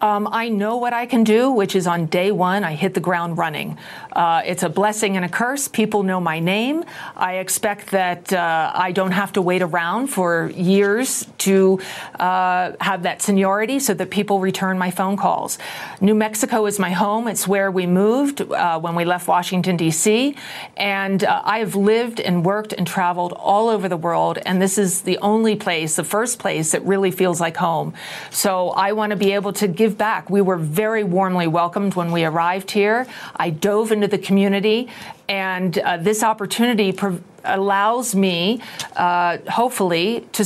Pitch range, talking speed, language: 180-210 Hz, 185 wpm, English